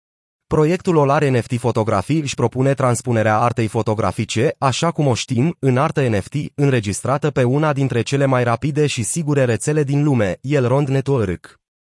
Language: Romanian